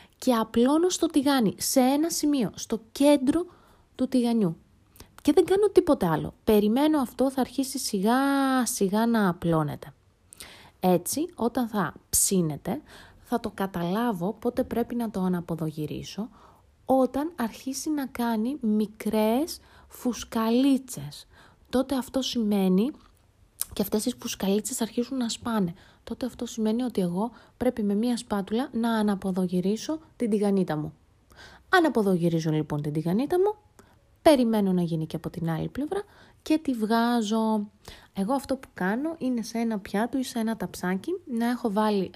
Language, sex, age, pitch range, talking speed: Greek, female, 30-49, 190-260 Hz, 140 wpm